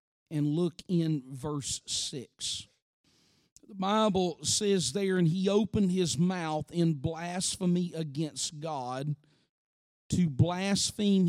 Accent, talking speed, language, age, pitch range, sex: American, 105 wpm, English, 50-69, 150-200 Hz, male